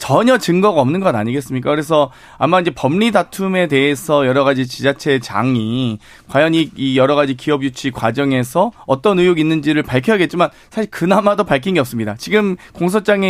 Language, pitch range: Korean, 130-190 Hz